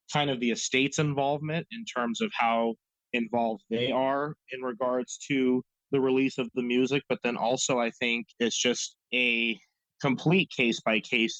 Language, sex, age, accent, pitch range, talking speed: English, male, 30-49, American, 110-135 Hz, 160 wpm